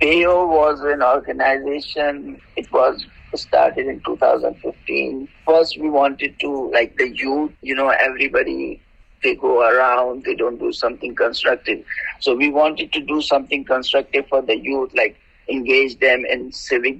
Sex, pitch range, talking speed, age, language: male, 135-180 Hz, 150 wpm, 50-69, English